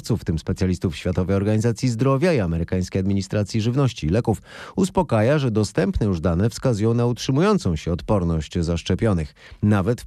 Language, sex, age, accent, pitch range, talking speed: Polish, male, 30-49, native, 90-130 Hz, 150 wpm